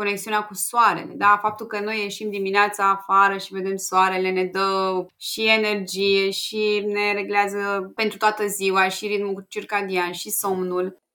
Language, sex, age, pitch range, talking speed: Romanian, female, 20-39, 195-250 Hz, 150 wpm